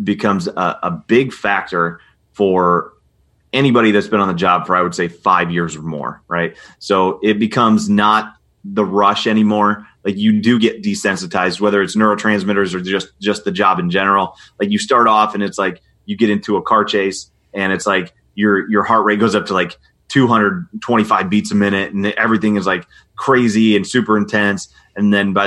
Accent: American